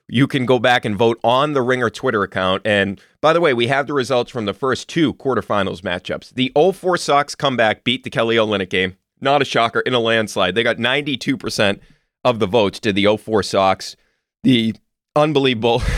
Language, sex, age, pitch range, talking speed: English, male, 30-49, 110-145 Hz, 195 wpm